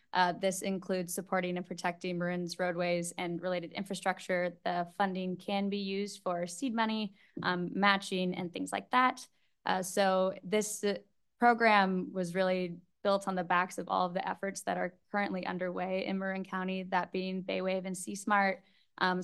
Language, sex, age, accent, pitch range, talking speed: English, female, 10-29, American, 180-200 Hz, 170 wpm